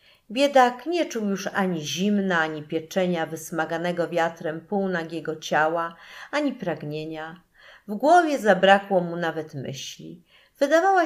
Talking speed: 115 wpm